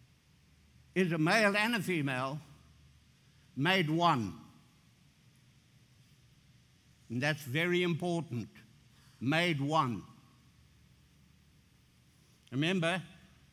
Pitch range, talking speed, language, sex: 140-175 Hz, 65 wpm, English, male